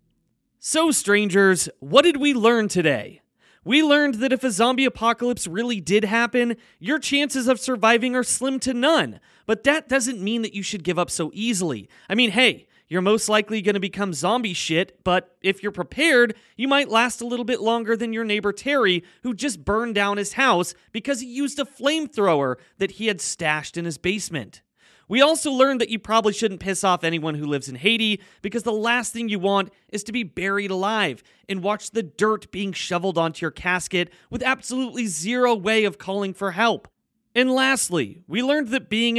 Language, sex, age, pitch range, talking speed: English, male, 30-49, 185-245 Hz, 195 wpm